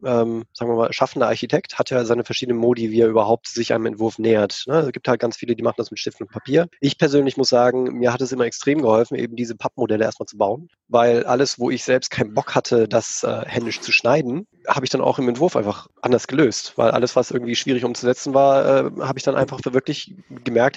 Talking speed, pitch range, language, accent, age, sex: 235 wpm, 120-135 Hz, German, German, 20-39, male